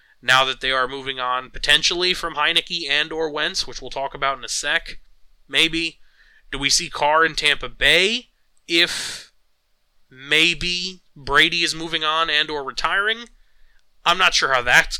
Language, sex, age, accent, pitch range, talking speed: English, male, 30-49, American, 135-185 Hz, 165 wpm